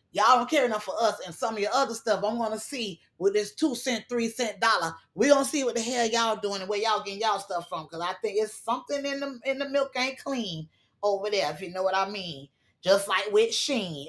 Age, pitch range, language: 20-39, 220-275 Hz, English